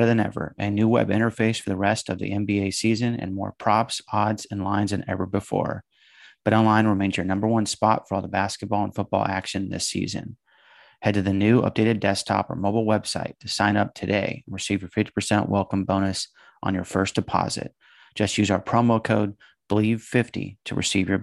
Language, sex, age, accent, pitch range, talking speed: English, male, 30-49, American, 95-110 Hz, 205 wpm